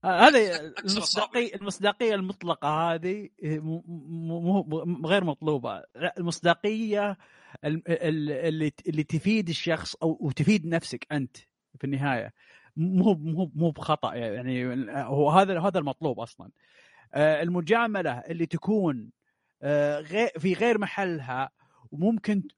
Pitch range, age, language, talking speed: 145-195 Hz, 30-49, Arabic, 95 wpm